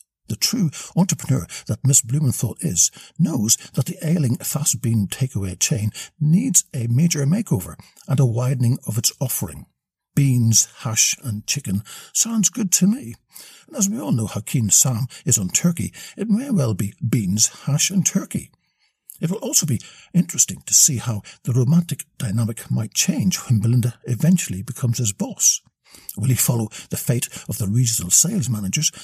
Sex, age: male, 60-79